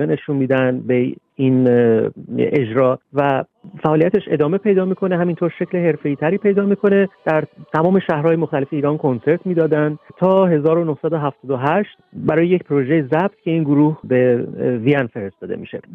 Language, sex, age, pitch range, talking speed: Persian, male, 40-59, 135-170 Hz, 135 wpm